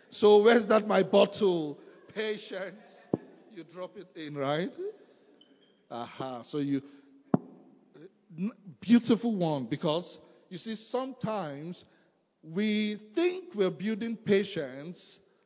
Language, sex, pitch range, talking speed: English, male, 150-215 Hz, 95 wpm